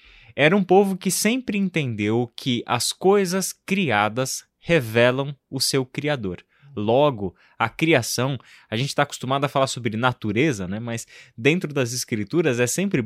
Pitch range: 105-135 Hz